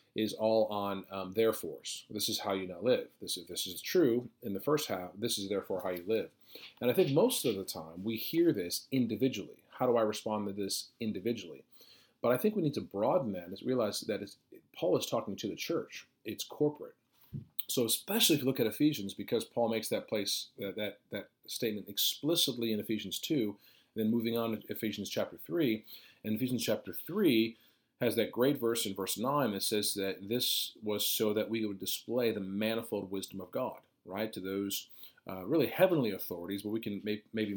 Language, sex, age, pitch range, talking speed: English, male, 40-59, 100-120 Hz, 205 wpm